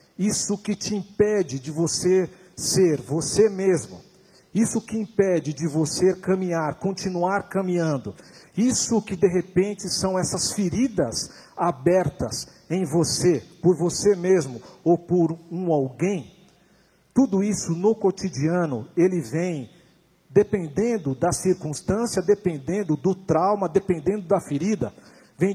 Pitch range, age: 155-195 Hz, 50-69